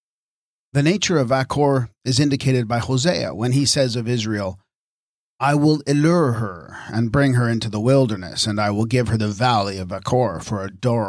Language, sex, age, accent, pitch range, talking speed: English, male, 40-59, American, 105-135 Hz, 190 wpm